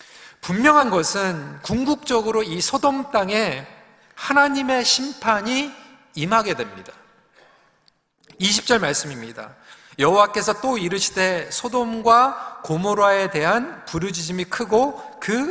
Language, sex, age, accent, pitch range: Korean, male, 40-59, native, 175-255 Hz